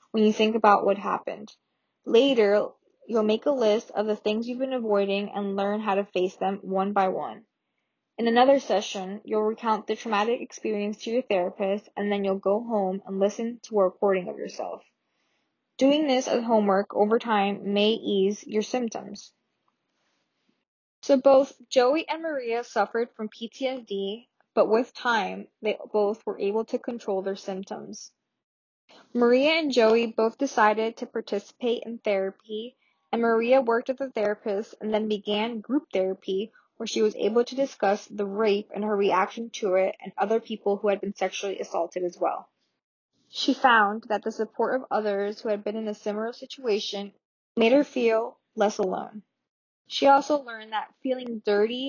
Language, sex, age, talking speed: English, female, 10-29, 170 wpm